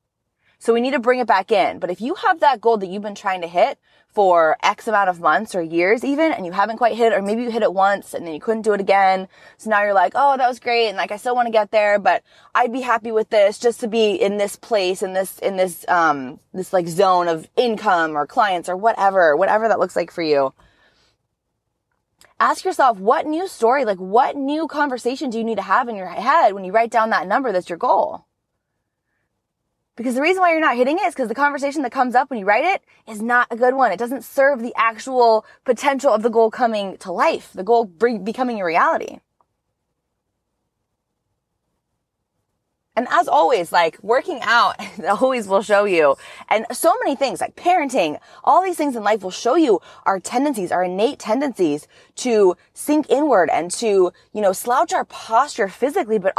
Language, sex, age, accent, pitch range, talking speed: English, female, 20-39, American, 195-255 Hz, 215 wpm